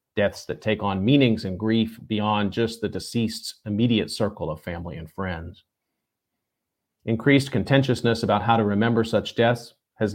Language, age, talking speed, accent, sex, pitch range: English, 40-59, 155 wpm, American, male, 105-125 Hz